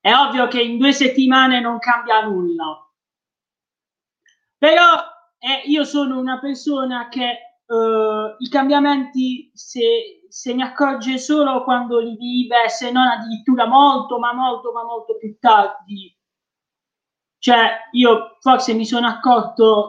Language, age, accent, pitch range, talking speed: Italian, 20-39, native, 225-270 Hz, 130 wpm